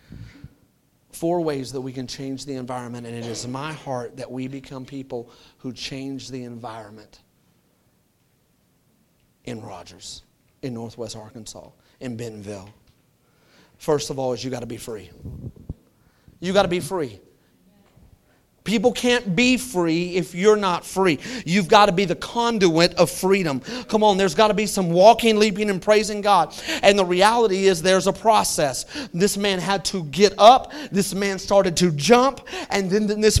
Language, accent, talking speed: English, American, 165 wpm